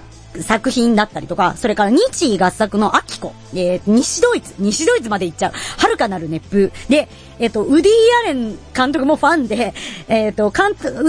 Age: 40-59